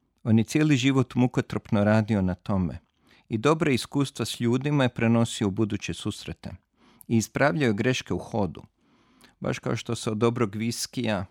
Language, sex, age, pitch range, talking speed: Croatian, male, 40-59, 100-130 Hz, 160 wpm